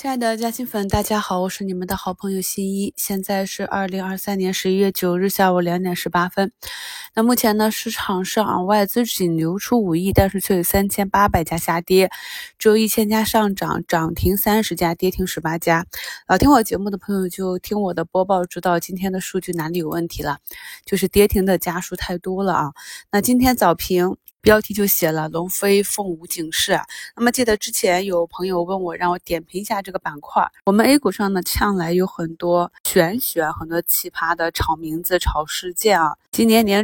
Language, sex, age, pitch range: Chinese, female, 20-39, 170-205 Hz